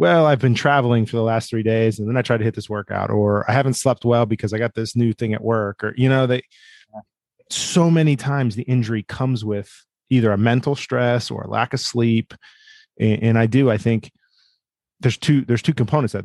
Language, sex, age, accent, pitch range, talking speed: English, male, 30-49, American, 105-130 Hz, 225 wpm